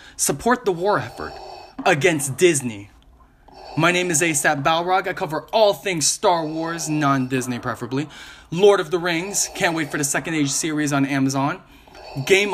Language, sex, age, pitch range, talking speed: English, male, 20-39, 145-185 Hz, 160 wpm